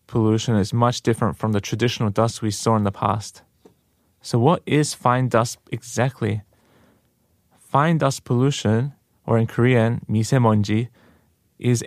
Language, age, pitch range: Korean, 20-39, 110-130 Hz